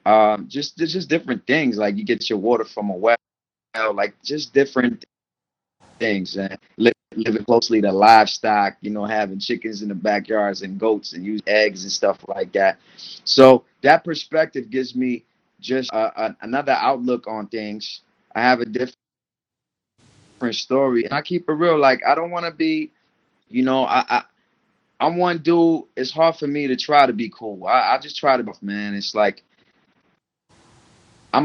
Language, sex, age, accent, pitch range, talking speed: English, male, 30-49, American, 110-140 Hz, 185 wpm